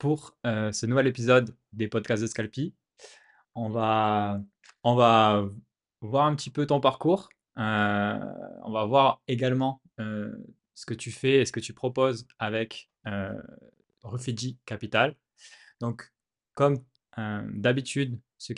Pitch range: 110-130 Hz